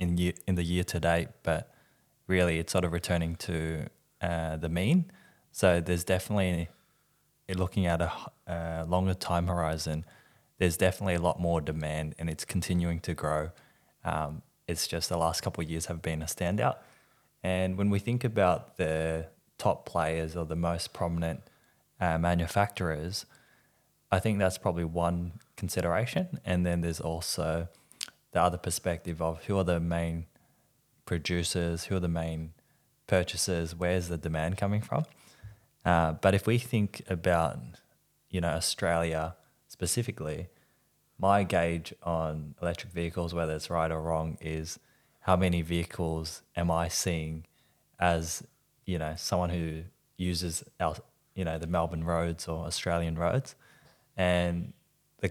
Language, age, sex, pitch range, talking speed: English, 20-39, male, 80-95 Hz, 150 wpm